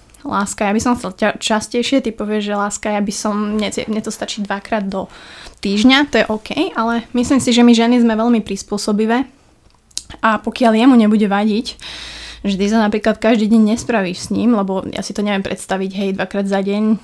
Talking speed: 195 wpm